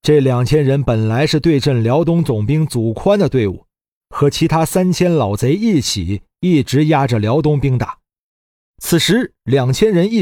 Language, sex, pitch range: Chinese, male, 110-150 Hz